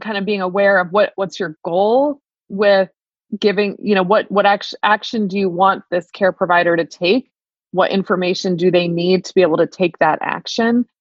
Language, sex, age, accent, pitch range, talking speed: English, female, 20-39, American, 170-195 Hz, 200 wpm